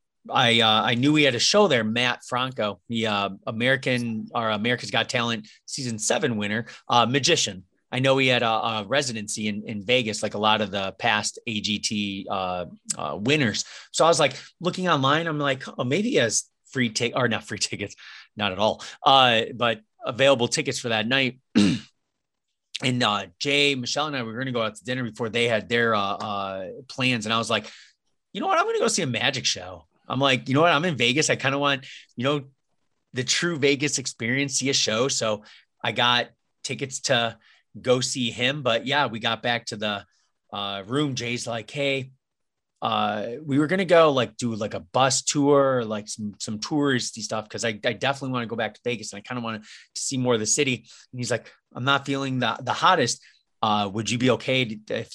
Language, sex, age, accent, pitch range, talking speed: English, male, 30-49, American, 110-135 Hz, 220 wpm